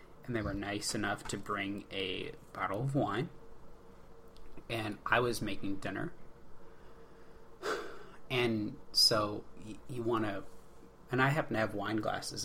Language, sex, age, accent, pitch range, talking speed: English, male, 30-49, American, 105-120 Hz, 135 wpm